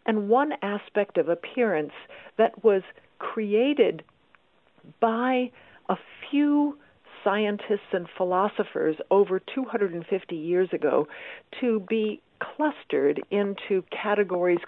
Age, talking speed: 60-79, 95 wpm